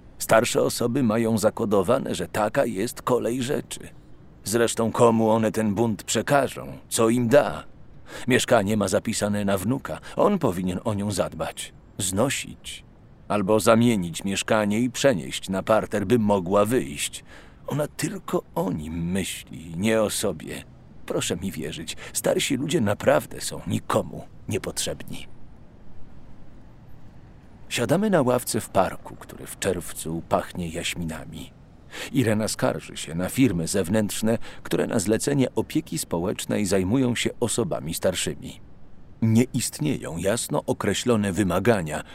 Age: 40-59